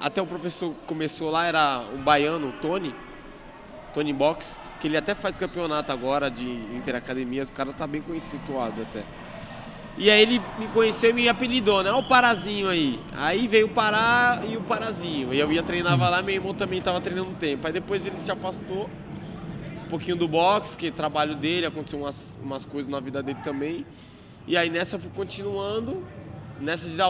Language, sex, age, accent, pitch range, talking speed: Portuguese, male, 20-39, Brazilian, 145-190 Hz, 195 wpm